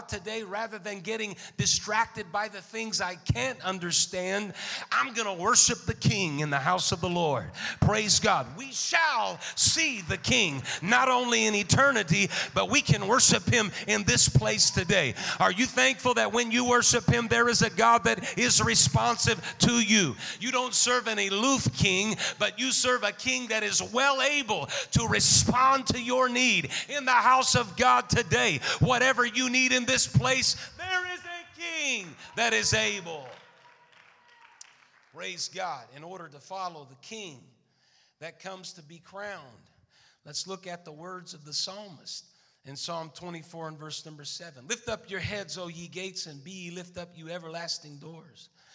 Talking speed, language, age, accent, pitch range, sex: 175 wpm, English, 40-59, American, 170-240 Hz, male